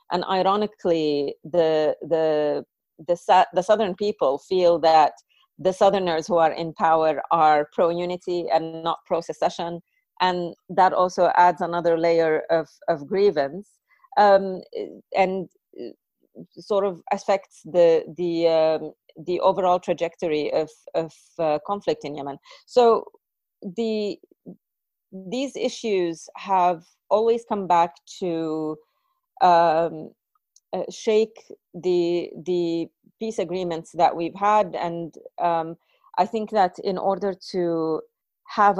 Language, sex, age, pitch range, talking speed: English, female, 30-49, 165-205 Hz, 120 wpm